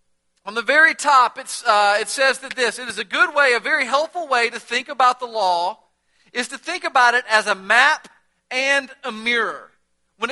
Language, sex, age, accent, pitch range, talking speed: English, male, 40-59, American, 220-280 Hz, 210 wpm